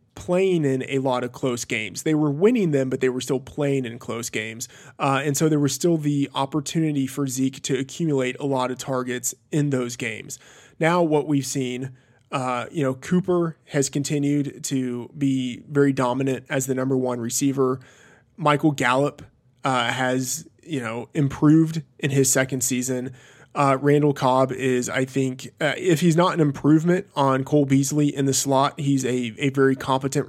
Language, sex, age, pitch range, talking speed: English, male, 20-39, 130-145 Hz, 180 wpm